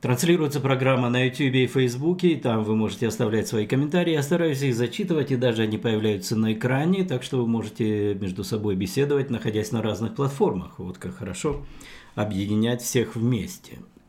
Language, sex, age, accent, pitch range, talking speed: Russian, male, 50-69, native, 110-135 Hz, 170 wpm